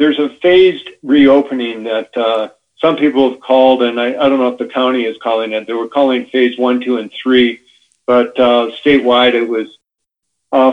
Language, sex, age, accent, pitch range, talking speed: English, male, 50-69, American, 115-135 Hz, 195 wpm